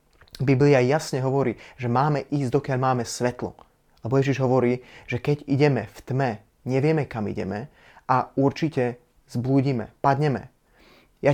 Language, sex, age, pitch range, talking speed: Slovak, male, 20-39, 120-140 Hz, 130 wpm